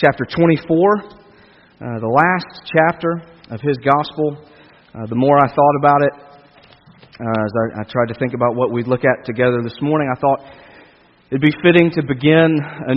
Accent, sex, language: American, male, English